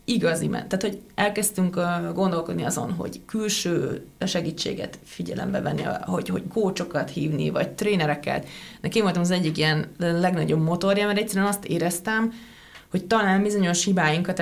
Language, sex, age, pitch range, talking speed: Hungarian, female, 30-49, 165-205 Hz, 135 wpm